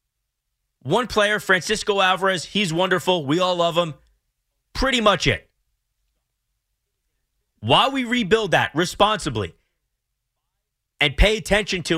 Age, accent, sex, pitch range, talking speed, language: 30-49, American, male, 135-195 Hz, 110 wpm, English